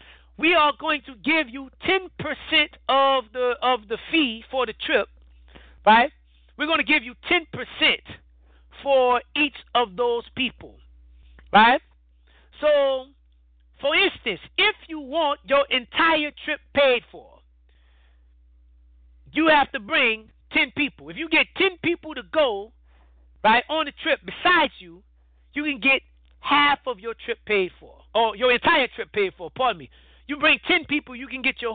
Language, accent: English, American